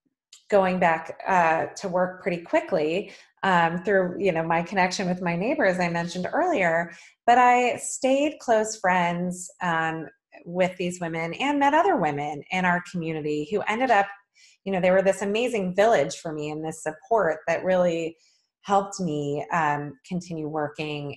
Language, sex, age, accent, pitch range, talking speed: English, female, 20-39, American, 160-240 Hz, 160 wpm